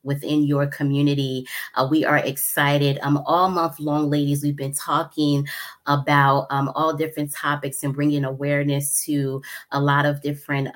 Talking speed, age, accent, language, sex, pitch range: 155 wpm, 20-39, American, English, female, 135-145 Hz